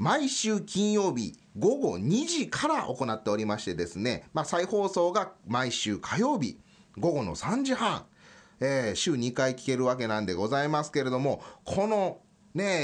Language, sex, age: Japanese, male, 30-49